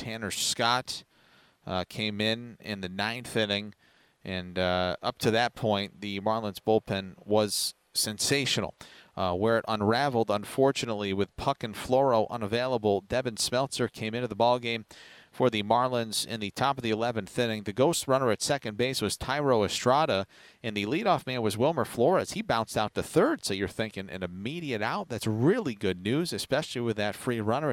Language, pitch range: English, 105-130 Hz